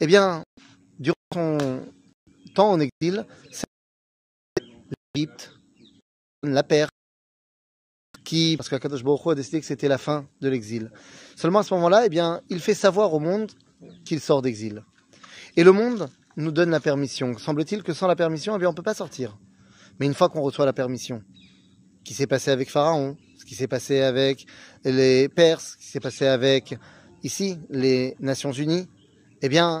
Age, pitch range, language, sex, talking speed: 30-49, 135-170 Hz, French, male, 175 wpm